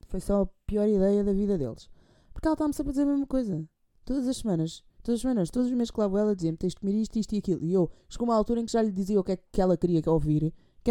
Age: 20-39